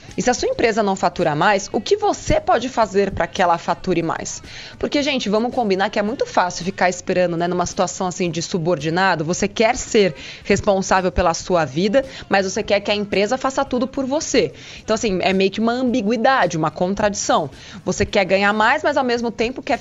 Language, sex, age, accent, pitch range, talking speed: Portuguese, female, 20-39, Brazilian, 185-245 Hz, 210 wpm